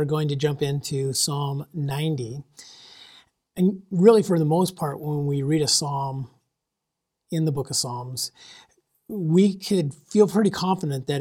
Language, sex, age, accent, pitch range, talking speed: English, male, 40-59, American, 140-175 Hz, 150 wpm